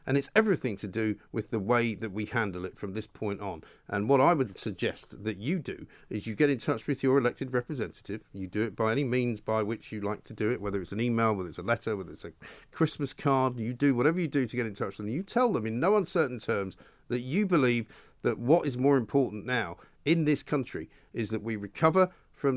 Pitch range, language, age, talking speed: 110-150 Hz, English, 50-69, 250 wpm